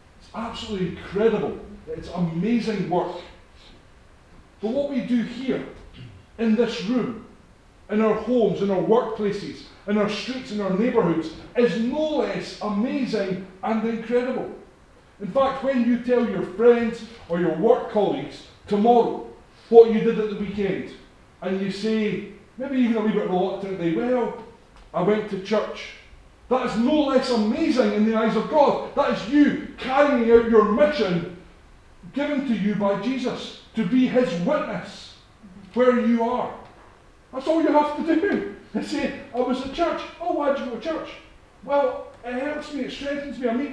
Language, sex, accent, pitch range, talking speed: English, male, British, 205-265 Hz, 165 wpm